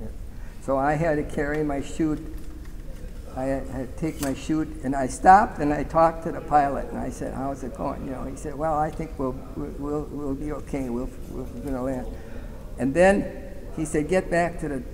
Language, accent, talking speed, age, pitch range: English, American, 215 wpm, 50-69, 125-150 Hz